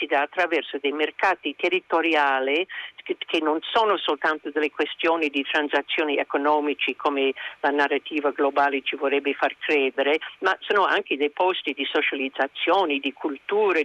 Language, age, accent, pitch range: Italian, 50-69, native, 145-185 Hz